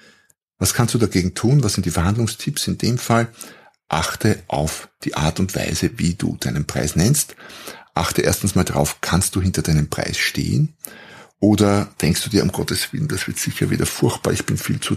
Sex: male